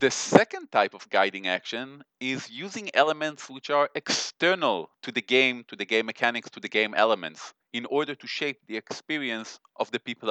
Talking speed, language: 185 wpm, English